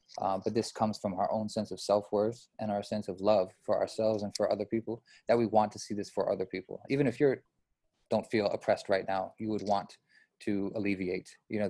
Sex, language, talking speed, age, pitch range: male, English, 230 wpm, 20-39, 100-115 Hz